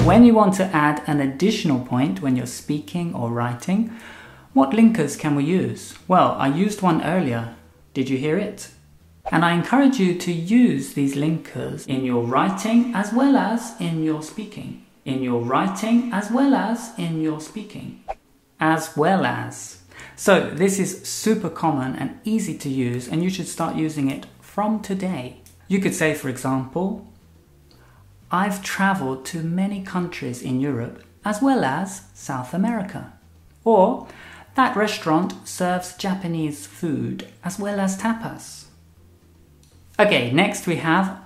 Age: 30-49